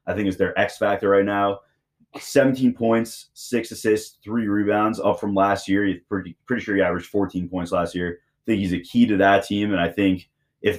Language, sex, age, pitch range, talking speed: English, male, 20-39, 90-105 Hz, 220 wpm